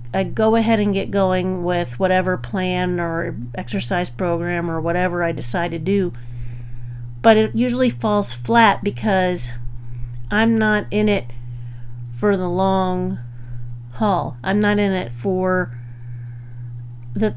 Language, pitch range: English, 120-200 Hz